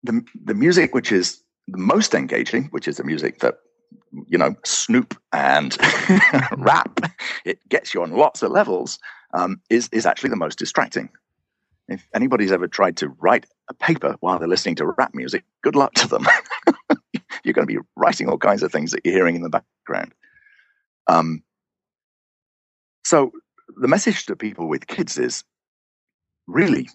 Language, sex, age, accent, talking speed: English, male, 50-69, British, 165 wpm